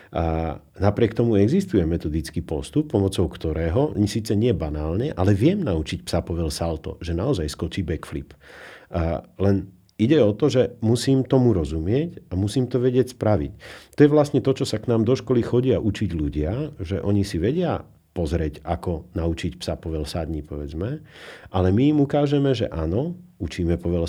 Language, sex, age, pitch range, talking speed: Slovak, male, 50-69, 85-115 Hz, 165 wpm